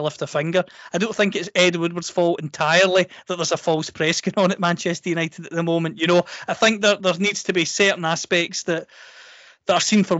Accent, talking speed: British, 235 wpm